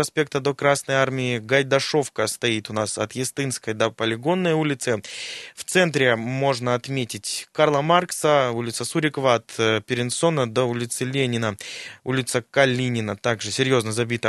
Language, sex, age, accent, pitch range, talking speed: Russian, male, 20-39, native, 115-140 Hz, 130 wpm